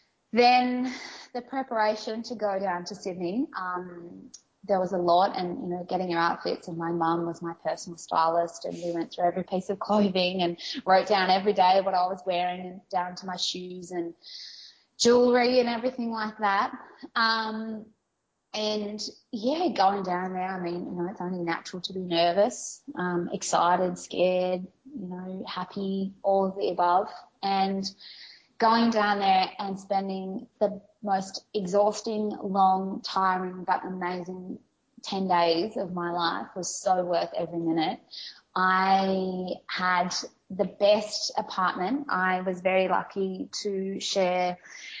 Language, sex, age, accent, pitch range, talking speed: English, female, 20-39, Australian, 180-210 Hz, 150 wpm